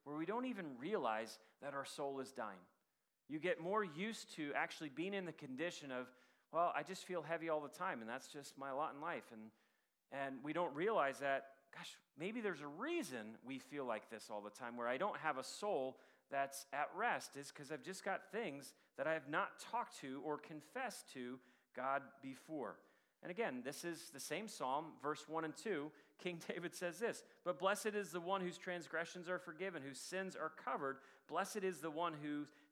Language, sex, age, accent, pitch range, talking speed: English, male, 40-59, American, 140-185 Hz, 205 wpm